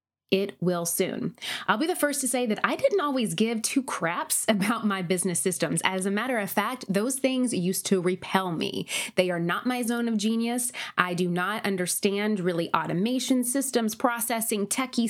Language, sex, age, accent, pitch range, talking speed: English, female, 20-39, American, 185-245 Hz, 185 wpm